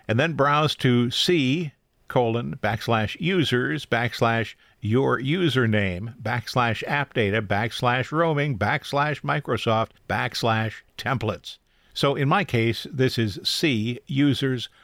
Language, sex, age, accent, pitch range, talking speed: English, male, 50-69, American, 115-150 Hz, 115 wpm